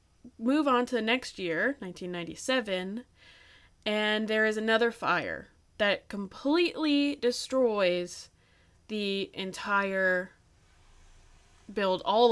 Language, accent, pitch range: English, American, 175-240 Hz